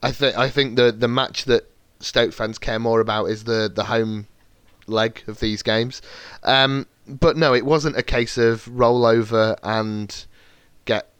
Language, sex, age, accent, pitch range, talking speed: English, male, 30-49, British, 110-135 Hz, 175 wpm